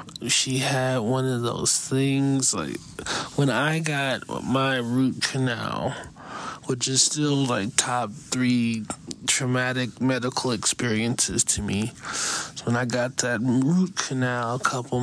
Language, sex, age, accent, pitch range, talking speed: English, male, 20-39, American, 120-140 Hz, 130 wpm